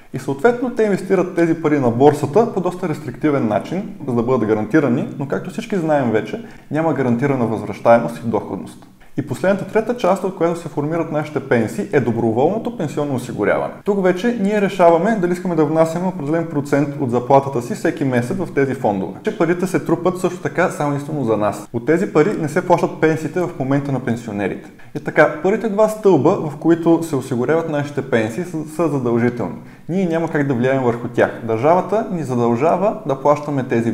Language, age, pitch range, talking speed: Bulgarian, 20-39, 130-180 Hz, 185 wpm